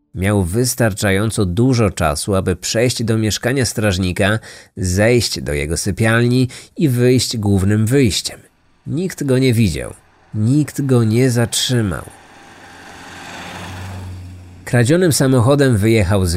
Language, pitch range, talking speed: Polish, 95-130 Hz, 105 wpm